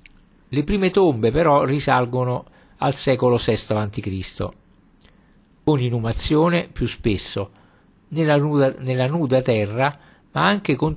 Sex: male